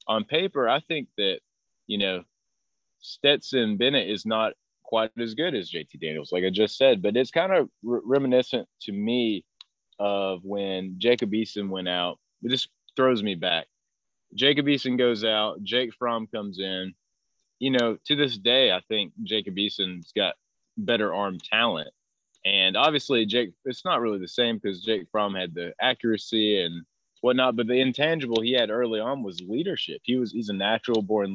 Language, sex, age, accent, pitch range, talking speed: English, male, 20-39, American, 100-125 Hz, 175 wpm